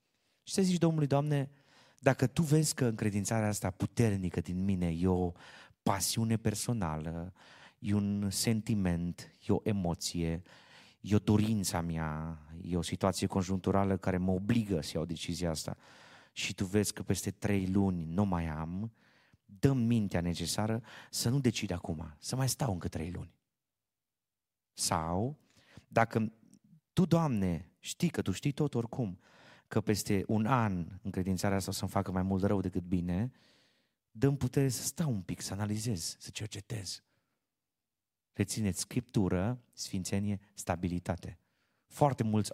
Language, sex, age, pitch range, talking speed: Romanian, male, 30-49, 90-120 Hz, 145 wpm